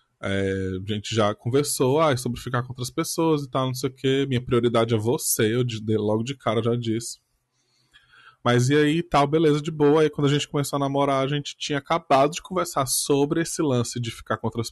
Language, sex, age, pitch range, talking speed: Portuguese, male, 20-39, 115-150 Hz, 225 wpm